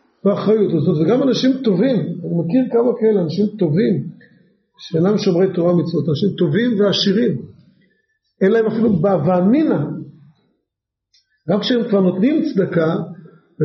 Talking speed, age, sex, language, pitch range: 90 wpm, 50-69, male, Hebrew, 185-255 Hz